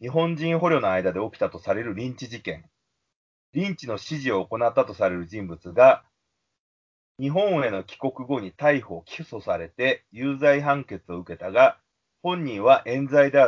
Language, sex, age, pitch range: Japanese, male, 30-49, 105-155 Hz